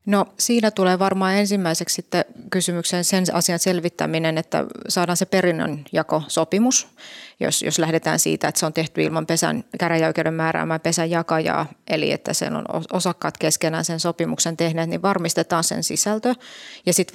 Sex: female